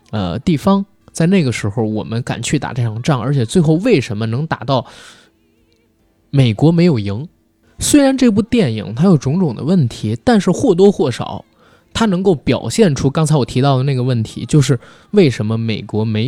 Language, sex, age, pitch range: Chinese, male, 20-39, 115-175 Hz